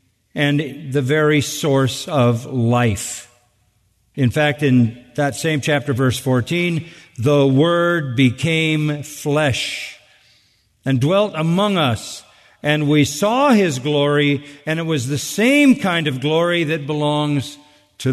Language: English